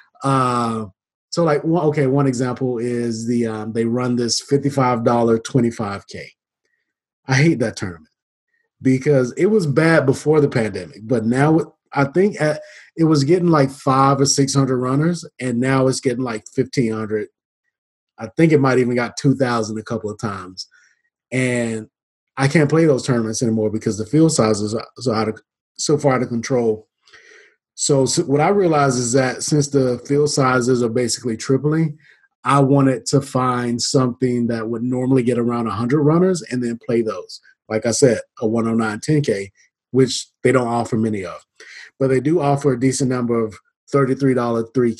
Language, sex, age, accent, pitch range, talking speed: English, male, 30-49, American, 115-140 Hz, 165 wpm